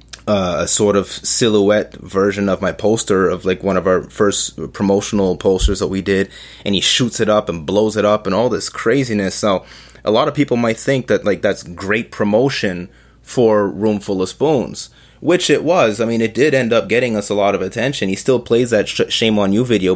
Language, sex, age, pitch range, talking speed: English, male, 20-39, 100-115 Hz, 225 wpm